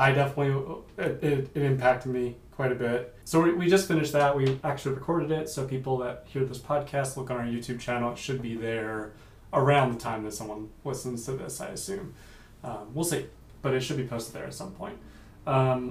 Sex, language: male, English